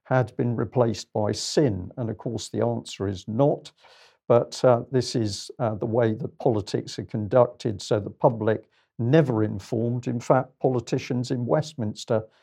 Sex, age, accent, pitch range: male, 50-69, British, 110-135 Hz